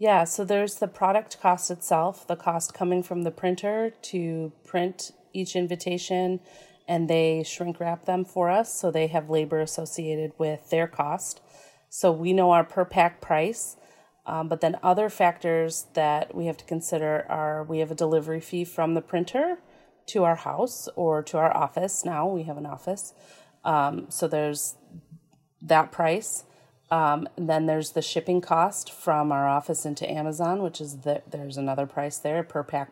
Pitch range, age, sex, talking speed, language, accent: 155-185 Hz, 30-49, female, 175 wpm, English, American